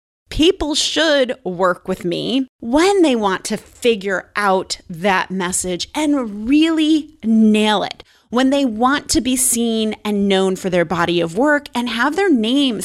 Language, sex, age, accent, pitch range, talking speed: English, female, 30-49, American, 195-275 Hz, 160 wpm